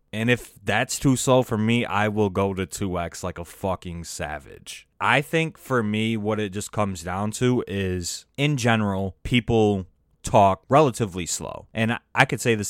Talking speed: 180 wpm